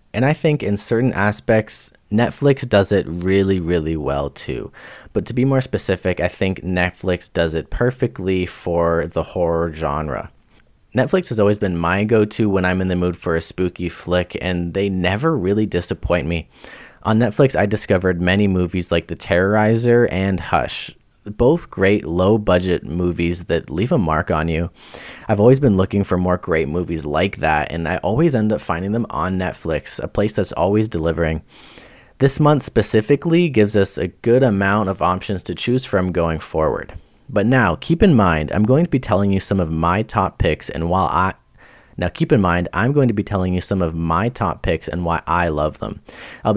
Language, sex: English, male